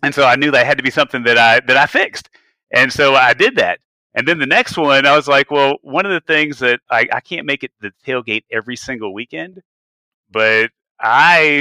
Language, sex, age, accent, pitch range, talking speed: English, male, 30-49, American, 125-145 Hz, 240 wpm